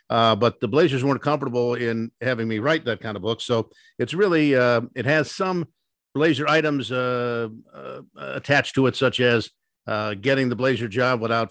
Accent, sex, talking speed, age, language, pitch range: American, male, 190 wpm, 50-69, English, 115-130 Hz